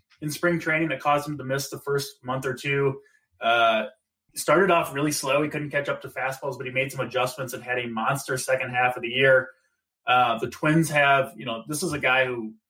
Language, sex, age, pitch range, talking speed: English, male, 20-39, 130-150 Hz, 230 wpm